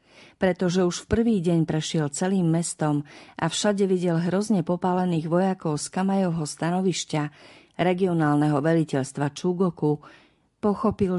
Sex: female